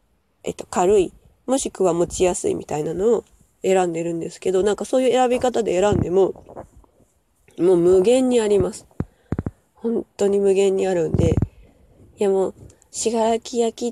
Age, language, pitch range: 20-39, Japanese, 175-220 Hz